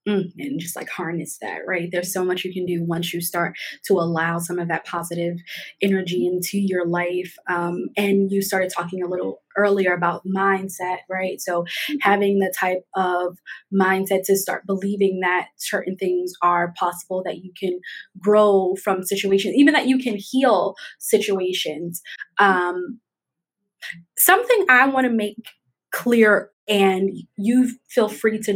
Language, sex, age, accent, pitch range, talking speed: English, female, 20-39, American, 185-225 Hz, 160 wpm